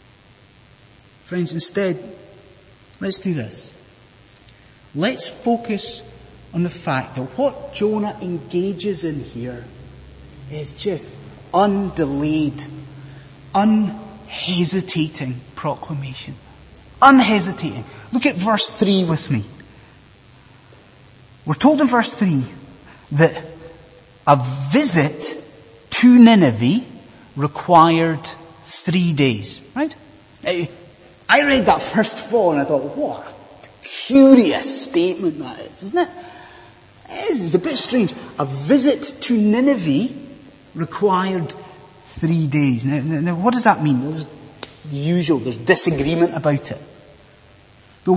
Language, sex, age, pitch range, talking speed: English, male, 30-49, 140-215 Hz, 105 wpm